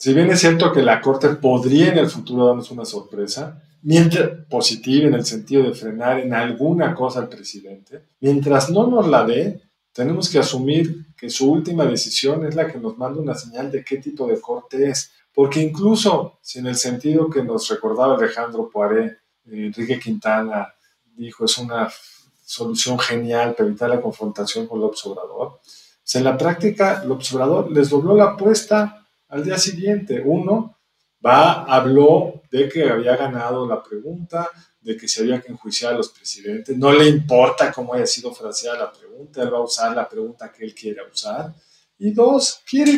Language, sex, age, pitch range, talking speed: Spanish, male, 40-59, 130-185 Hz, 180 wpm